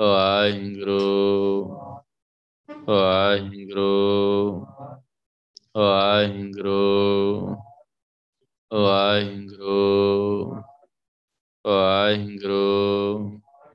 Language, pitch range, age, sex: Punjabi, 100-105 Hz, 20-39, male